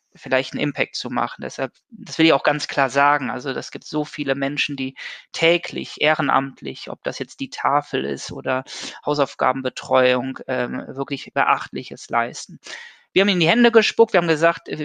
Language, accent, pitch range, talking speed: German, German, 140-160 Hz, 175 wpm